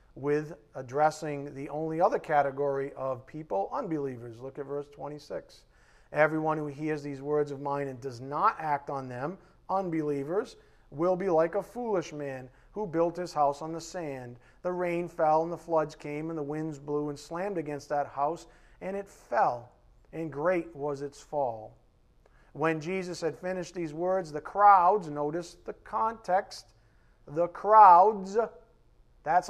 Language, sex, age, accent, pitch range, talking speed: English, male, 40-59, American, 135-190 Hz, 165 wpm